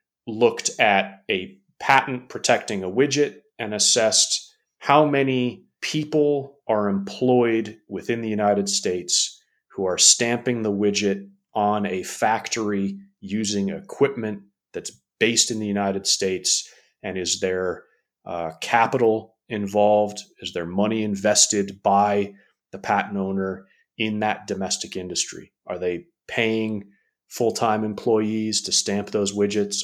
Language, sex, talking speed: English, male, 125 wpm